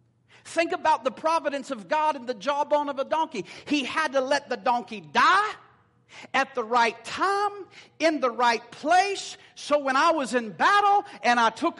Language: English